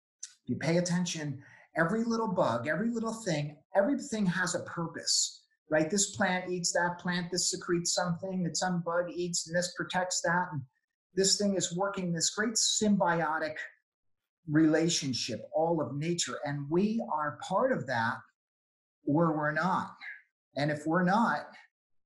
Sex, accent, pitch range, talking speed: male, American, 150-180 Hz, 150 wpm